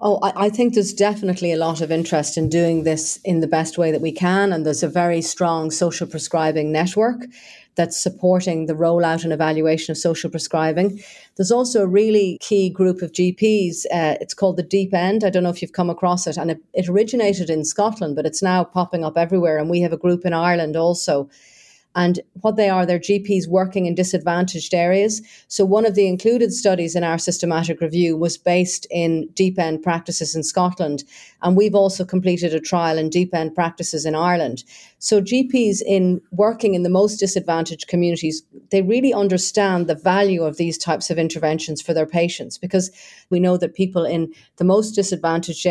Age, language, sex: 40-59, English, female